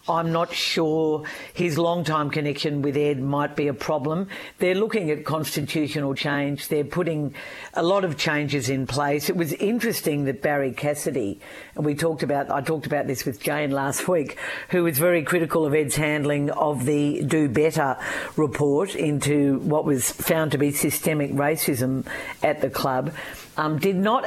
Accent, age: Australian, 50-69